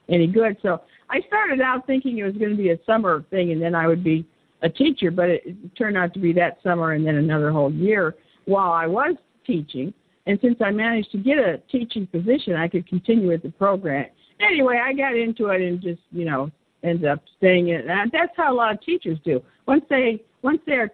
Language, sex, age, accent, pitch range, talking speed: English, female, 50-69, American, 165-235 Hz, 230 wpm